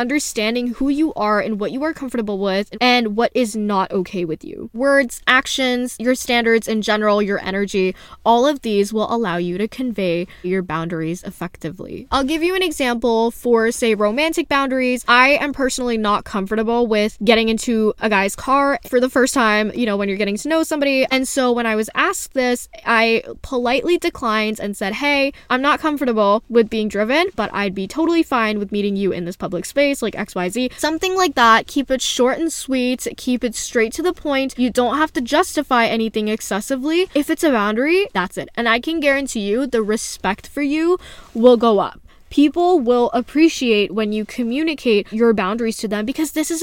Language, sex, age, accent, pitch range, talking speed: English, female, 10-29, American, 210-275 Hz, 195 wpm